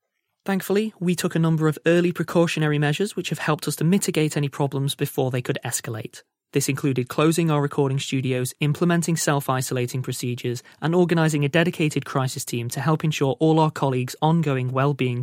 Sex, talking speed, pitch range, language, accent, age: male, 175 wpm, 130-165 Hz, English, British, 20-39